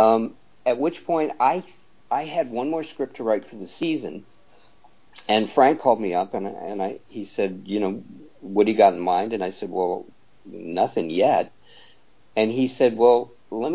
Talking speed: 190 wpm